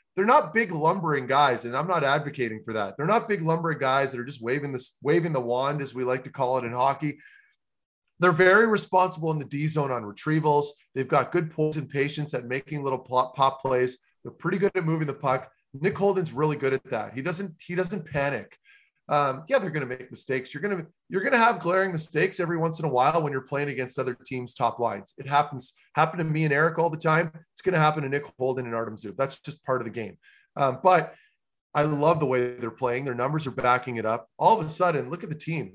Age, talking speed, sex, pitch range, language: 30-49, 245 wpm, male, 130-165 Hz, English